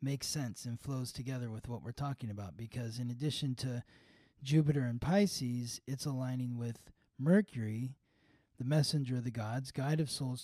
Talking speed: 165 wpm